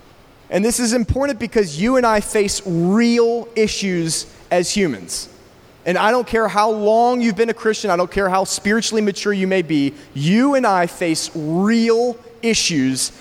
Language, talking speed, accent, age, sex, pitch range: English, 175 wpm, American, 30-49, male, 170-230 Hz